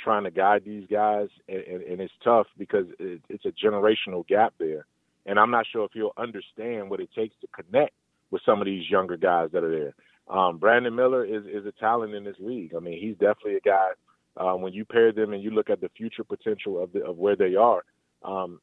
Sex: male